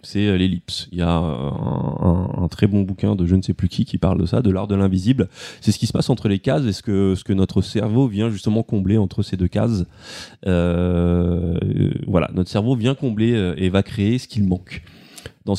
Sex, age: male, 20-39